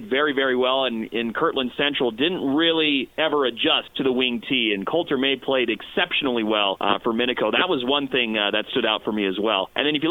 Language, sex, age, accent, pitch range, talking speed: English, male, 30-49, American, 125-160 Hz, 235 wpm